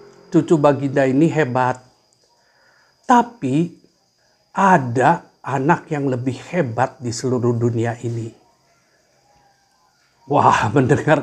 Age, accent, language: 50-69, native, Indonesian